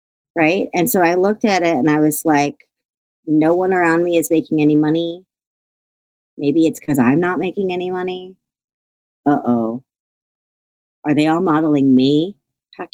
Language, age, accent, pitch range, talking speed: English, 40-59, American, 155-260 Hz, 160 wpm